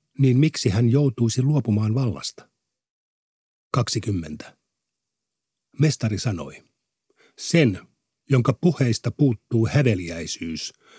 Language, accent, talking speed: Finnish, native, 75 wpm